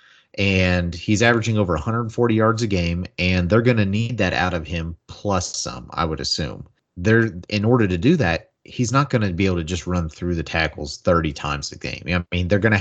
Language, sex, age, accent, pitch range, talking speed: English, male, 30-49, American, 85-105 Hz, 230 wpm